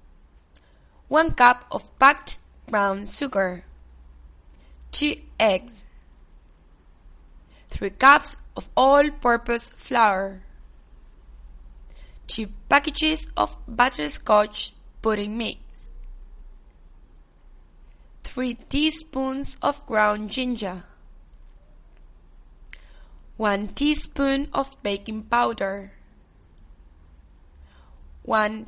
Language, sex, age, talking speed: English, female, 20-39, 65 wpm